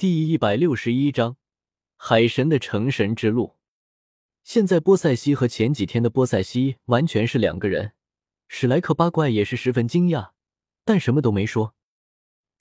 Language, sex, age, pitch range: Chinese, male, 20-39, 110-160 Hz